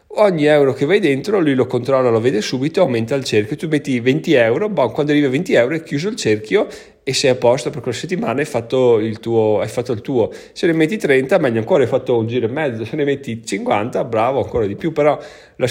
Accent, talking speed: native, 235 wpm